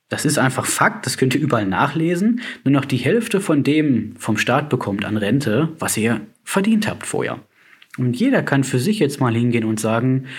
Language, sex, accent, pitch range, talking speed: German, male, German, 115-165 Hz, 200 wpm